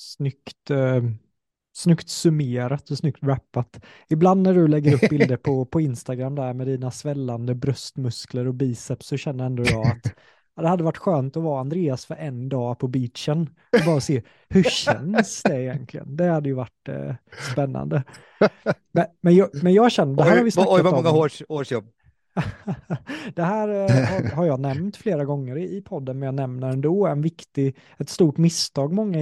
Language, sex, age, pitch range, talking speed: Swedish, male, 20-39, 130-170 Hz, 170 wpm